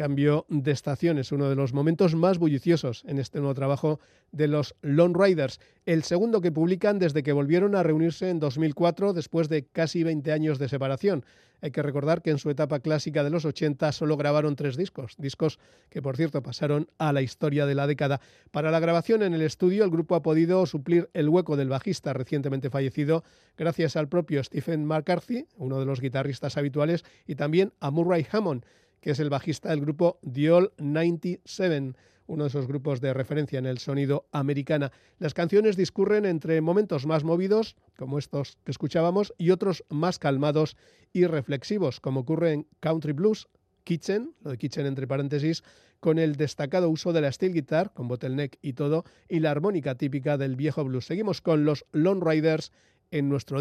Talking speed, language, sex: 185 wpm, Spanish, male